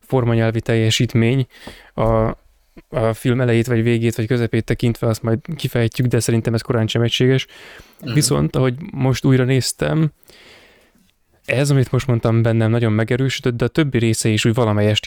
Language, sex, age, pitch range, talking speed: Hungarian, male, 20-39, 115-130 Hz, 155 wpm